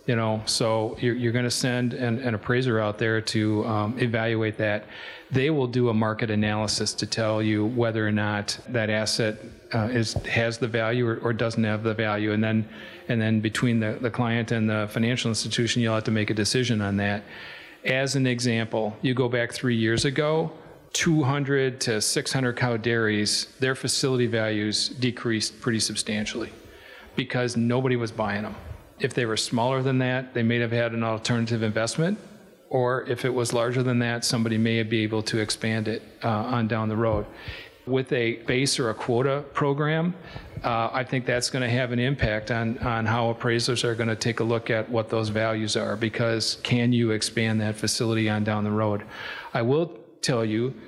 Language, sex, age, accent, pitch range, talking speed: English, male, 40-59, American, 110-125 Hz, 190 wpm